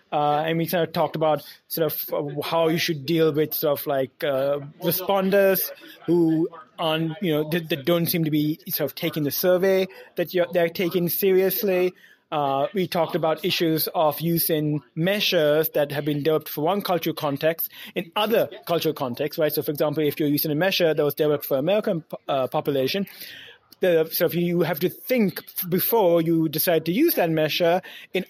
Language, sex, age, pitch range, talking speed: English, male, 20-39, 150-185 Hz, 185 wpm